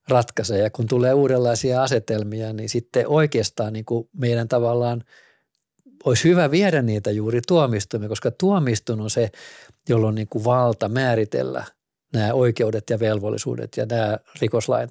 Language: Finnish